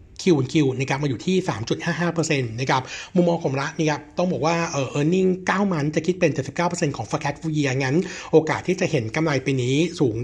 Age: 60-79